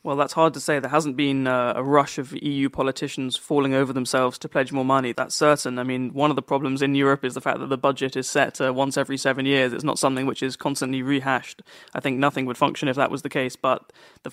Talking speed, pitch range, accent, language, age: 260 wpm, 130-145 Hz, British, English, 20-39